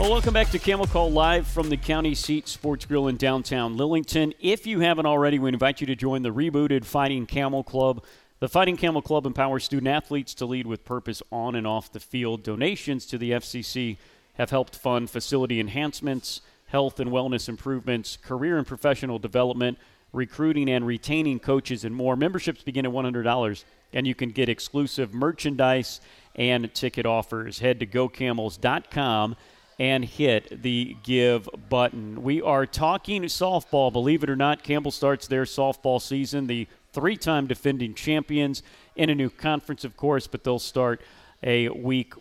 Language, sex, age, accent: English, male, 40-59, American